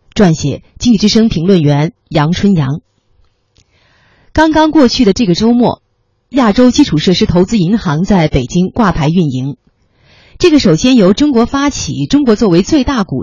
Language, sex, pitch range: Chinese, female, 145-220 Hz